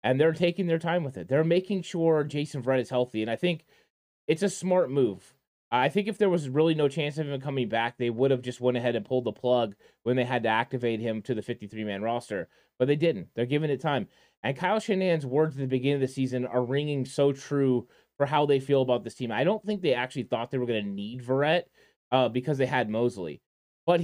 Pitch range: 125-175 Hz